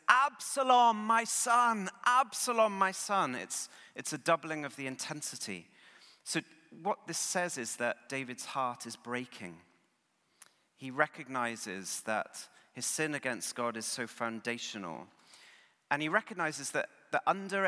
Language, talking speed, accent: English, 130 wpm, British